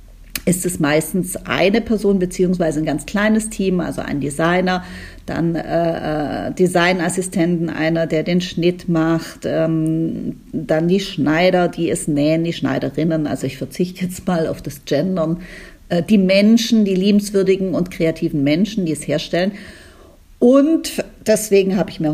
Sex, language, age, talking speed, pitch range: female, German, 50-69, 145 wpm, 160-200 Hz